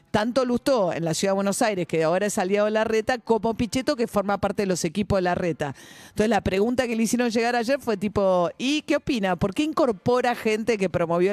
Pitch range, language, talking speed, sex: 180-230 Hz, Spanish, 240 wpm, female